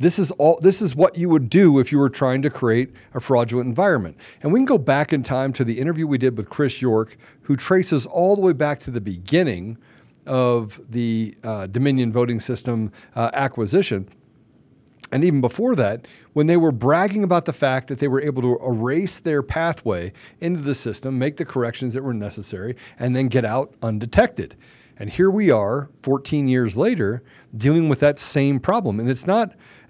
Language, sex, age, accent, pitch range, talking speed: English, male, 50-69, American, 125-180 Hz, 195 wpm